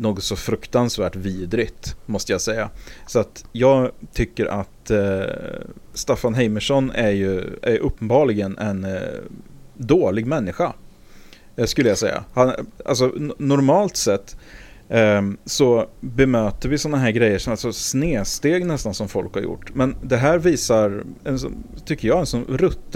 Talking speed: 120 wpm